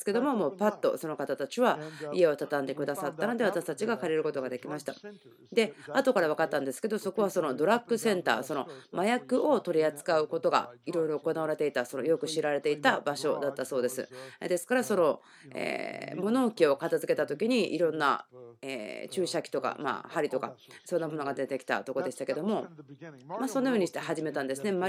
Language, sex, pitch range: Japanese, female, 140-200 Hz